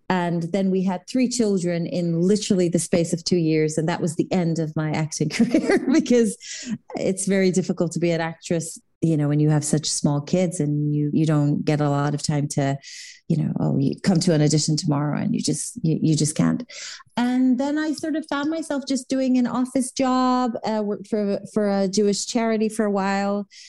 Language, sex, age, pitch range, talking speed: English, female, 30-49, 155-195 Hz, 220 wpm